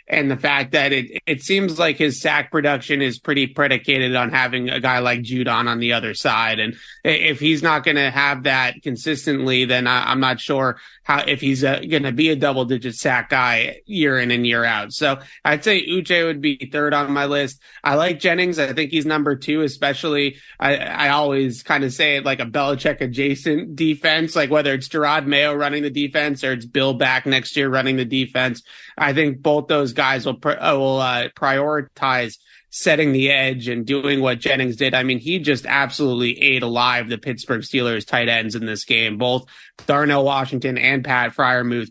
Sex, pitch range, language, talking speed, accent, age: male, 125-150 Hz, English, 205 wpm, American, 30-49